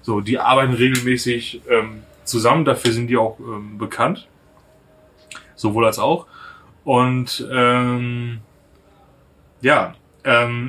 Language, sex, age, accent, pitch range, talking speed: German, male, 20-39, German, 110-130 Hz, 105 wpm